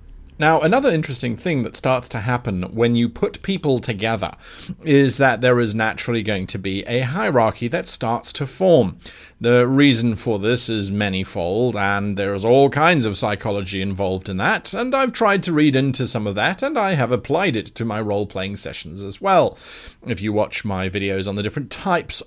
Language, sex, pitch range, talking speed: English, male, 100-130 Hz, 195 wpm